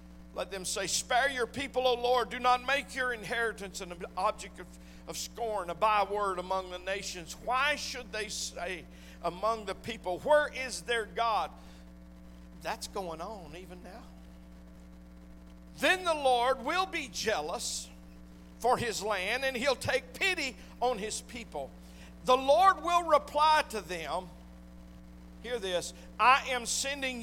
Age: 50-69